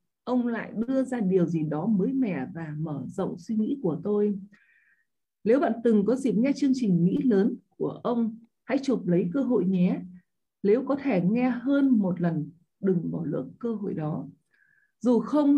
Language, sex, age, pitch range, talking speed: Vietnamese, female, 20-39, 180-255 Hz, 190 wpm